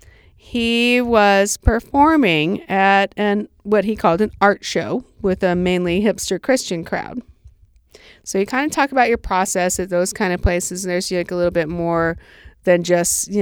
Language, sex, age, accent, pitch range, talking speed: English, female, 40-59, American, 165-205 Hz, 180 wpm